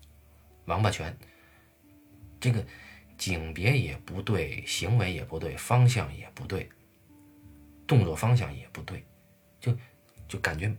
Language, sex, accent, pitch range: Chinese, male, native, 80-105 Hz